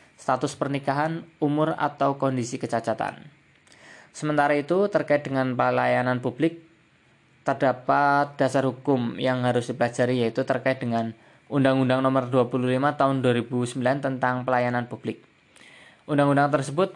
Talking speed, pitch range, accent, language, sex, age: 110 wpm, 125-145 Hz, native, Indonesian, male, 20-39